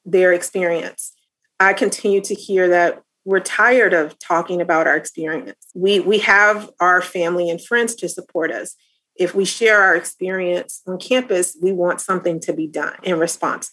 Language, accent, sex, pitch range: English, American, female, 170-195 Hz